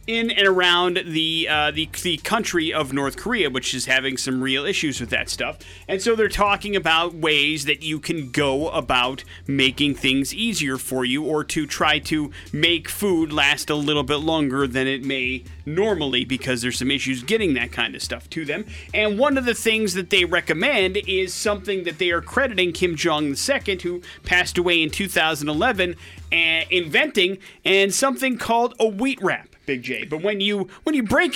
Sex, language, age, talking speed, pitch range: male, English, 30-49, 190 wpm, 150-200 Hz